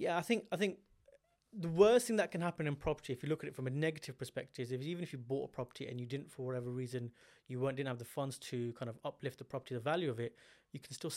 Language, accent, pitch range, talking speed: English, British, 125-150 Hz, 295 wpm